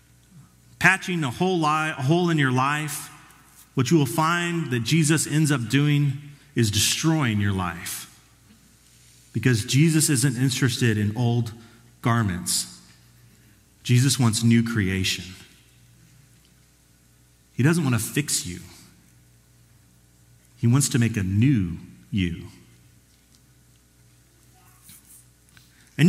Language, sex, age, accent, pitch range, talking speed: English, male, 40-59, American, 105-175 Hz, 100 wpm